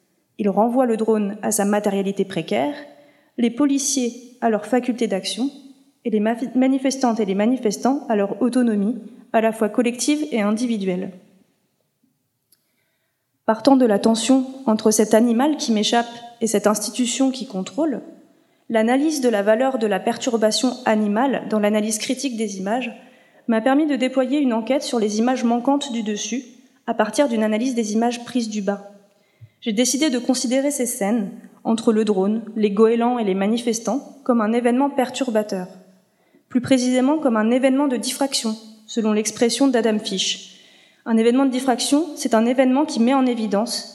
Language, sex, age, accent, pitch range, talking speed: French, female, 30-49, French, 215-260 Hz, 160 wpm